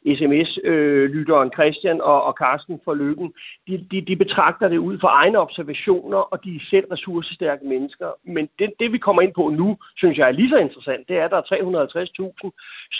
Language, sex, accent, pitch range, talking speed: Danish, male, native, 170-225 Hz, 190 wpm